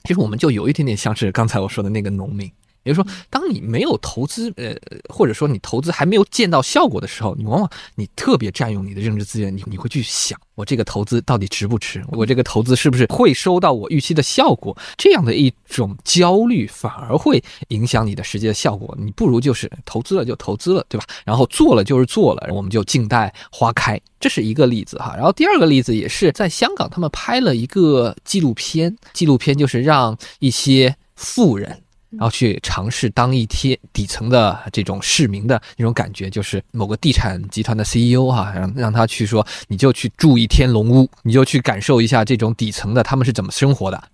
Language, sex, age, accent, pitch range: Chinese, male, 20-39, native, 105-135 Hz